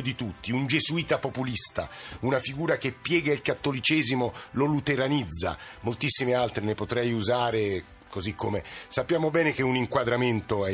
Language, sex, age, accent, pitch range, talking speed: Italian, male, 50-69, native, 105-135 Hz, 145 wpm